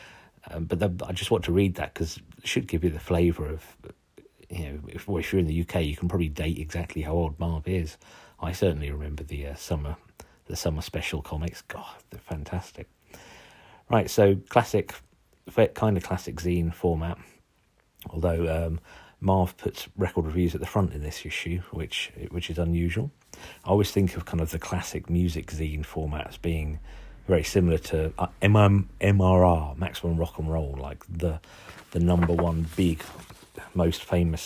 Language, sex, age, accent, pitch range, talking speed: English, male, 40-59, British, 80-95 Hz, 175 wpm